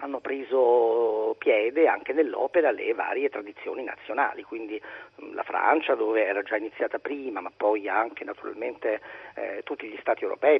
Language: Italian